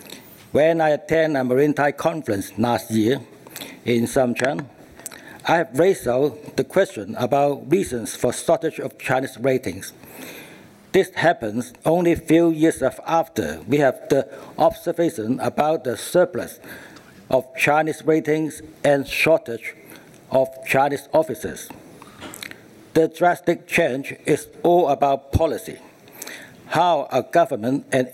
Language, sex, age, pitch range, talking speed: English, male, 60-79, 130-155 Hz, 120 wpm